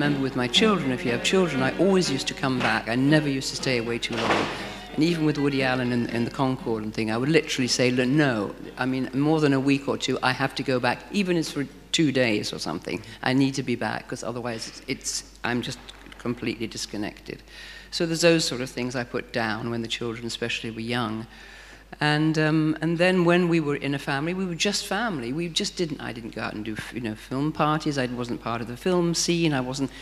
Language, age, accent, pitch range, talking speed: Swedish, 50-69, British, 120-155 Hz, 245 wpm